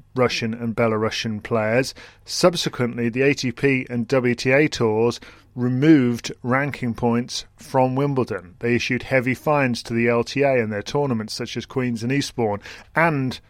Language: English